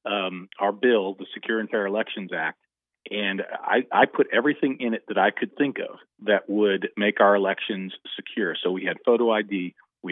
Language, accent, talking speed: English, American, 195 wpm